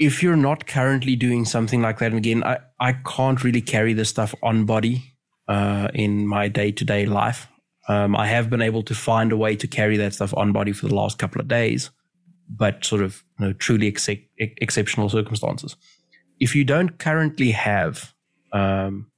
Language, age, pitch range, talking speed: English, 20-39, 105-130 Hz, 190 wpm